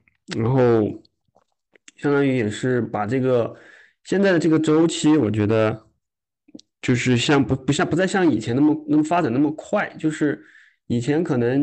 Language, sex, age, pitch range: Chinese, male, 20-39, 115-150 Hz